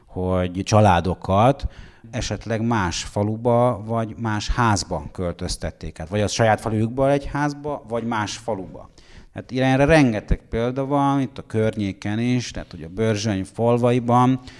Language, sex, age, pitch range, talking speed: Hungarian, male, 30-49, 95-120 Hz, 135 wpm